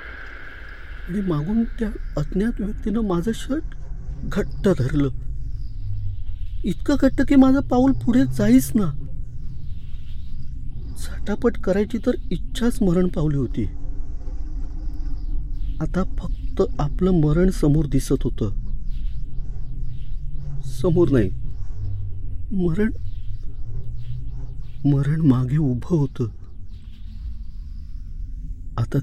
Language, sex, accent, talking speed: Marathi, male, native, 80 wpm